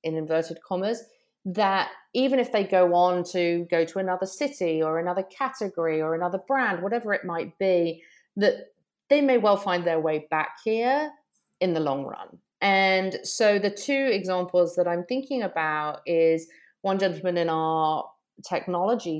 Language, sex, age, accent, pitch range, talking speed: English, female, 30-49, British, 160-195 Hz, 165 wpm